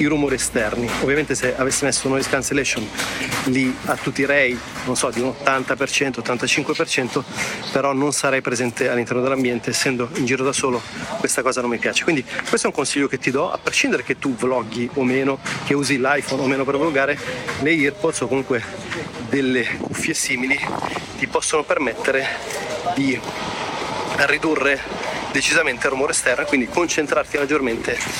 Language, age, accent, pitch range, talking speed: Italian, 30-49, native, 130-150 Hz, 170 wpm